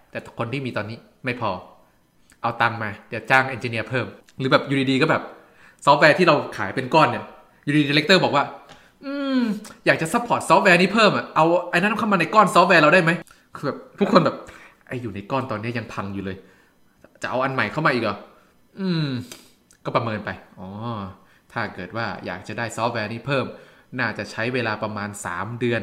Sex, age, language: male, 20-39, Thai